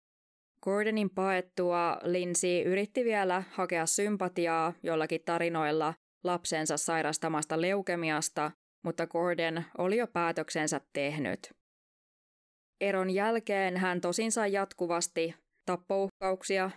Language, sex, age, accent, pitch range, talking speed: Finnish, female, 20-39, native, 165-185 Hz, 90 wpm